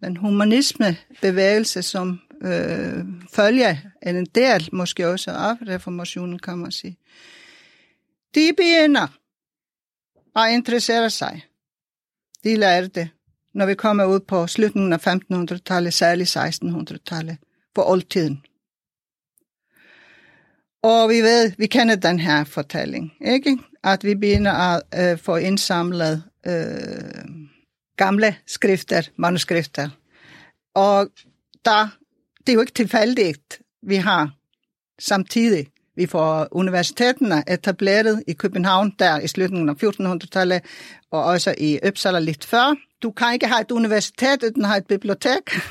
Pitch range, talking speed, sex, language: 175-225 Hz, 120 wpm, female, Danish